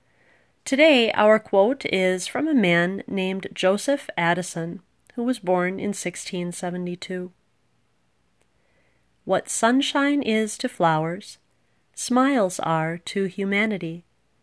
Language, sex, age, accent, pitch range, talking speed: English, female, 30-49, American, 170-215 Hz, 100 wpm